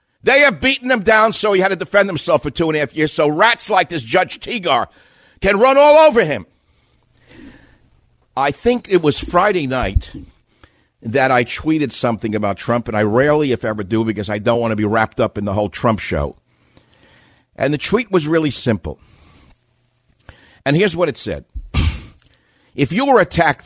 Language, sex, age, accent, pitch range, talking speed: English, male, 50-69, American, 115-180 Hz, 190 wpm